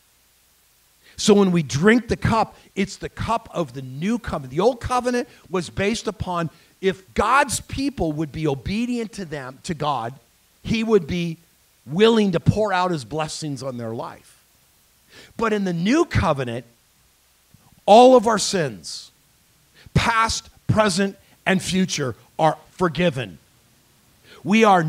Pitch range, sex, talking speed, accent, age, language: 150-225 Hz, male, 140 wpm, American, 50-69, English